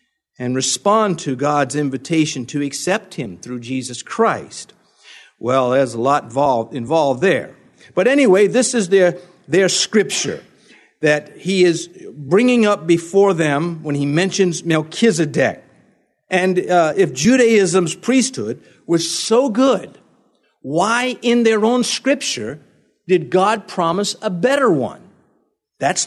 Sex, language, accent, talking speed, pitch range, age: male, English, American, 125 wpm, 165-240 Hz, 50-69